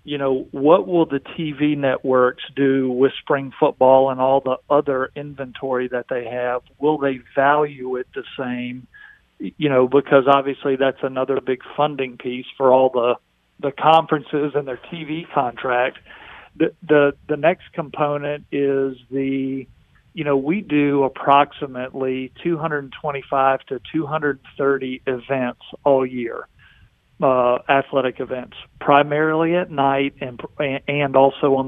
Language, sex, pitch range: English, male, 130-145 Hz